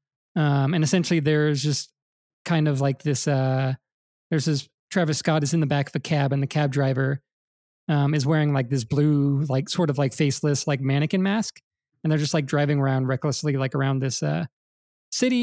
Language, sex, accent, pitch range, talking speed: English, male, American, 140-165 Hz, 200 wpm